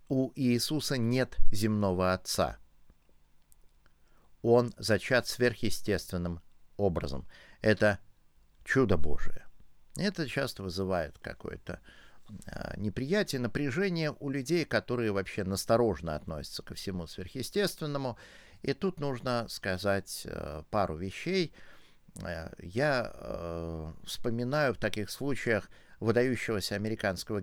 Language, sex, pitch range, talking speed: Russian, male, 90-130 Hz, 85 wpm